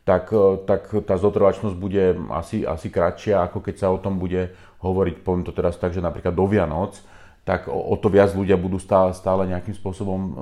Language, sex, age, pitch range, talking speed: Slovak, male, 40-59, 90-100 Hz, 195 wpm